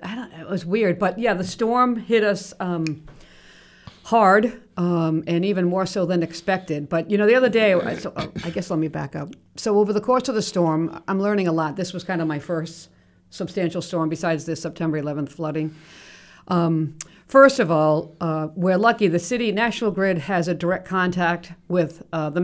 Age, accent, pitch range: 50-69, American, 165-205 Hz